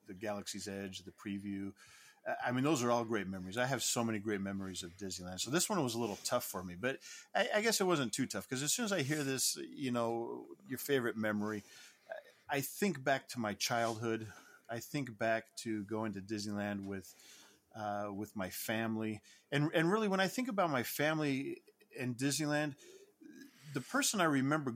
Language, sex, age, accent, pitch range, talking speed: English, male, 40-59, American, 110-135 Hz, 195 wpm